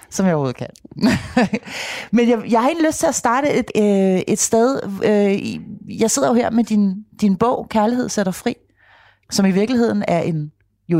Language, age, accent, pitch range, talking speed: Danish, 30-49, native, 175-225 Hz, 190 wpm